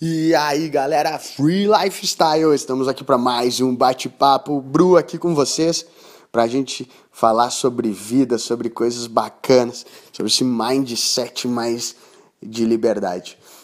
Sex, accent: male, Brazilian